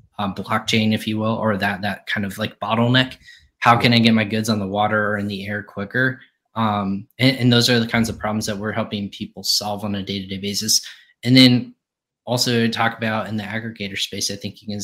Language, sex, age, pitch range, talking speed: English, male, 20-39, 100-115 Hz, 240 wpm